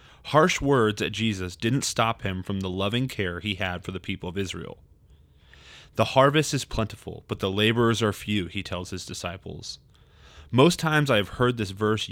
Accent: American